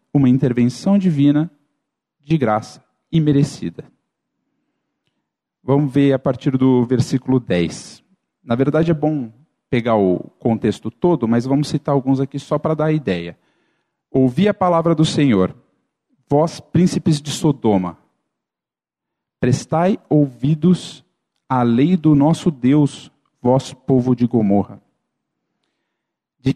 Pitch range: 100-145 Hz